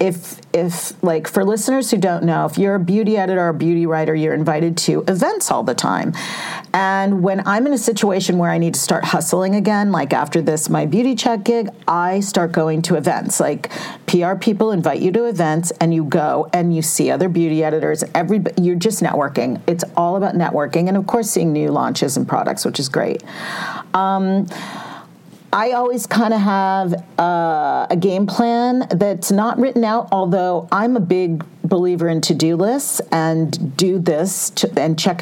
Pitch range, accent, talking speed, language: 165-200 Hz, American, 190 wpm, English